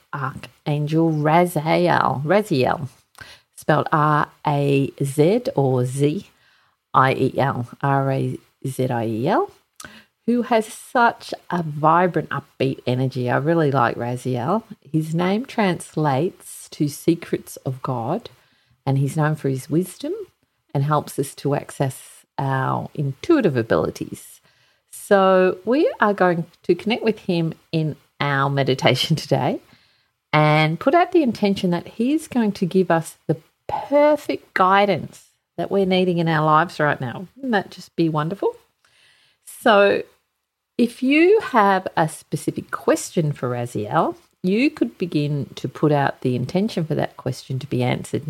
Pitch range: 140-195 Hz